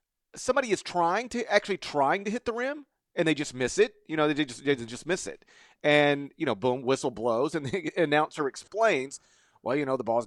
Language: English